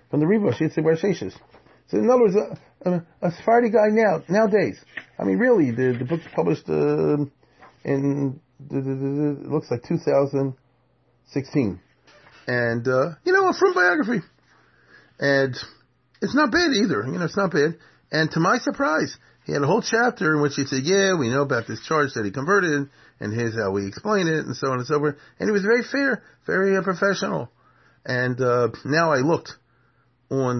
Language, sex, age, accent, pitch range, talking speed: English, male, 40-59, American, 115-170 Hz, 185 wpm